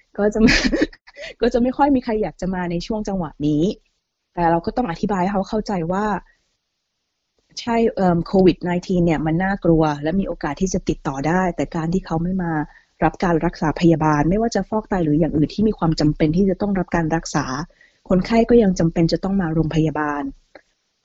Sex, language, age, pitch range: female, Thai, 20-39, 160-200 Hz